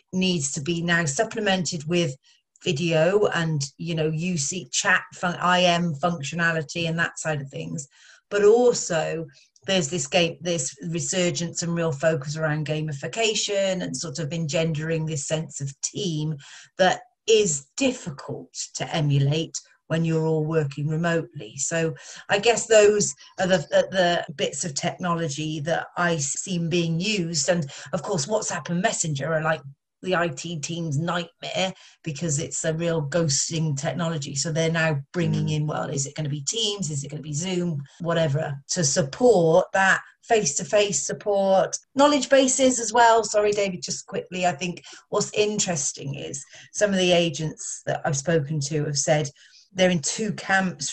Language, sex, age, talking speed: English, female, 40-59, 160 wpm